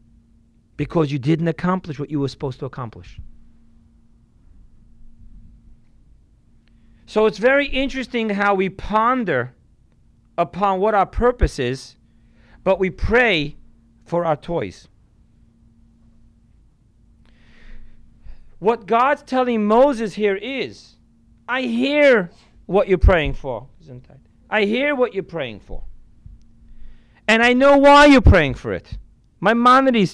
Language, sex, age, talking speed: English, male, 40-59, 110 wpm